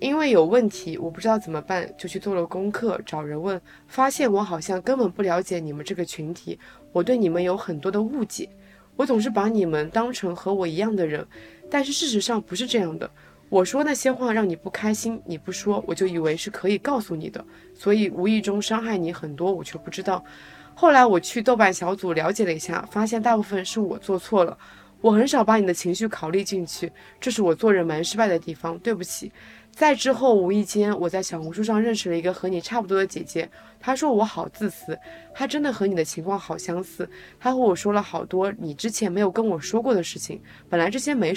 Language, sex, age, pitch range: Chinese, female, 20-39, 175-225 Hz